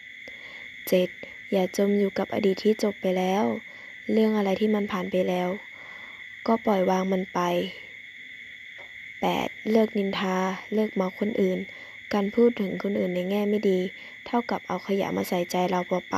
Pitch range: 190-220 Hz